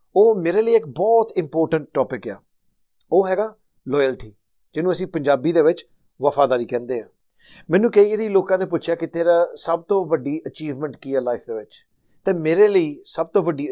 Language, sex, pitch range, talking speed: Punjabi, male, 140-185 Hz, 185 wpm